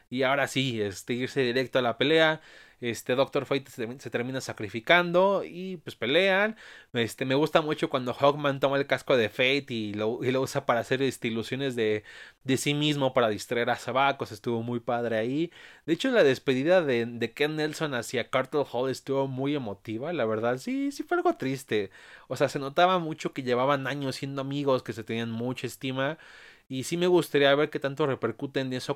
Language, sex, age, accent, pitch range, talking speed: Spanish, male, 30-49, Mexican, 120-150 Hz, 200 wpm